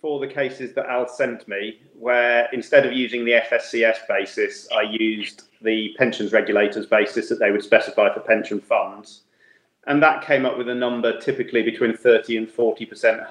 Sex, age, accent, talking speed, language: male, 30-49, British, 175 wpm, English